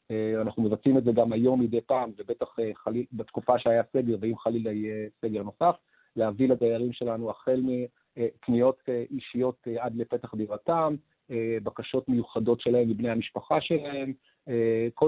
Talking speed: 135 wpm